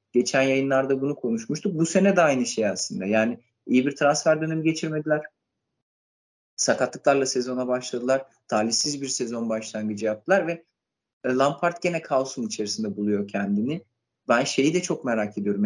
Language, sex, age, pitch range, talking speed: Turkish, male, 30-49, 110-140 Hz, 140 wpm